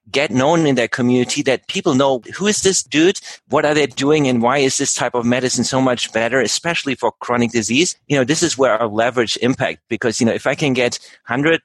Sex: male